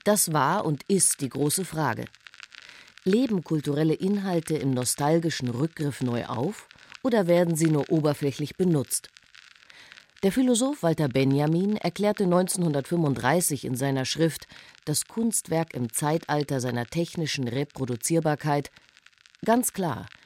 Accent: German